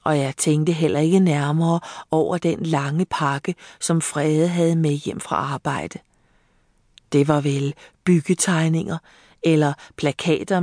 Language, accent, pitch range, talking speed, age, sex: Danish, native, 145-170 Hz, 130 wpm, 40-59, female